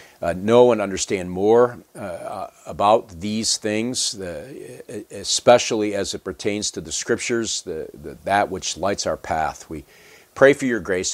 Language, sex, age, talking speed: English, male, 50-69, 160 wpm